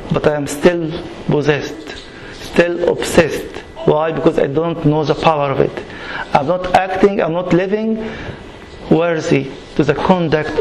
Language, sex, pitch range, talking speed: English, male, 155-185 Hz, 145 wpm